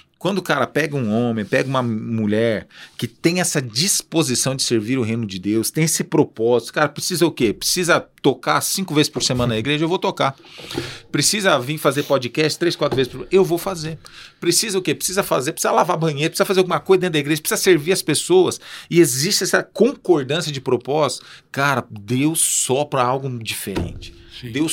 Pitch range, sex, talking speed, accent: 130-180 Hz, male, 190 wpm, Brazilian